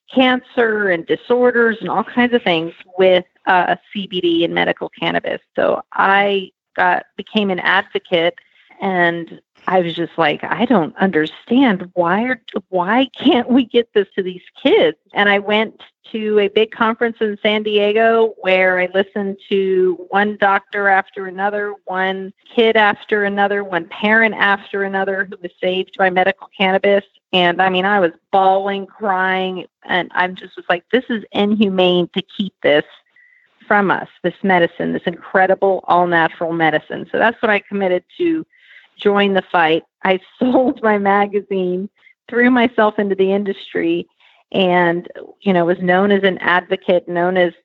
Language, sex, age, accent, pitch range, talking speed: English, female, 40-59, American, 180-215 Hz, 155 wpm